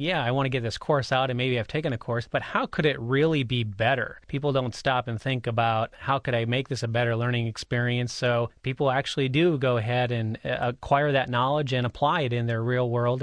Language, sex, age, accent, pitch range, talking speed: English, male, 30-49, American, 120-145 Hz, 240 wpm